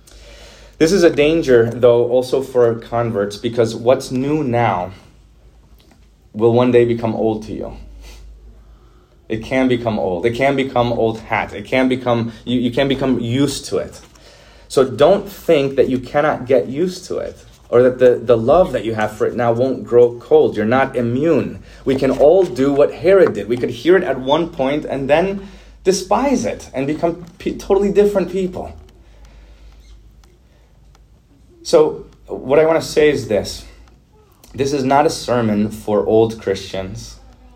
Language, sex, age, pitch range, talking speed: English, male, 30-49, 100-135 Hz, 165 wpm